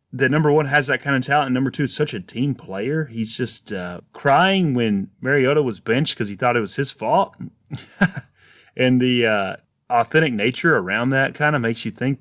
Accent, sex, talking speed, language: American, male, 210 wpm, English